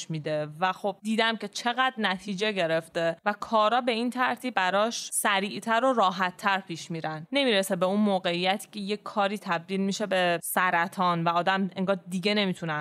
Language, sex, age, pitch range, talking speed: Persian, female, 20-39, 180-245 Hz, 170 wpm